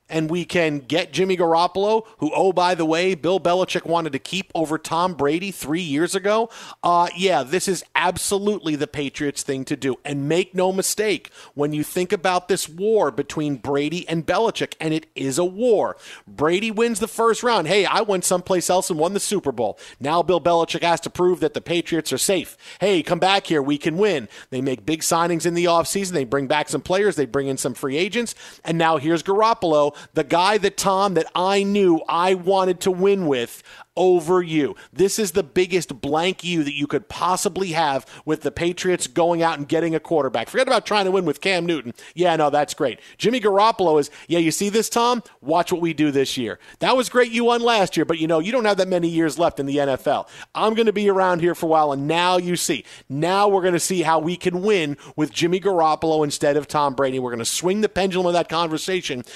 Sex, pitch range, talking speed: male, 155-190 Hz, 225 wpm